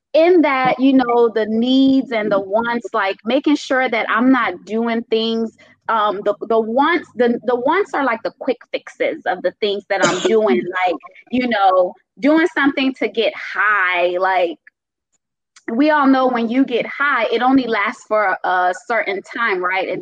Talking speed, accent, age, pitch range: 180 wpm, American, 20-39, 205-280 Hz